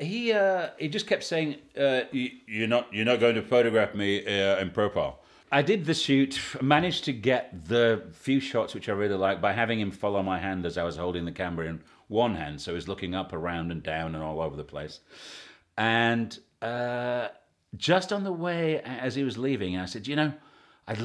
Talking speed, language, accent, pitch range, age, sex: 215 wpm, English, British, 95-155 Hz, 40-59, male